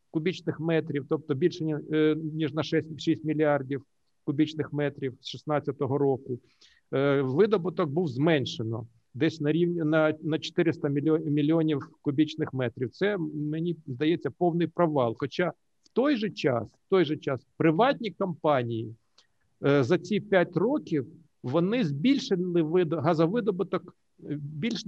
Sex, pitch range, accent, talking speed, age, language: male, 145-175 Hz, native, 125 wpm, 50-69, Ukrainian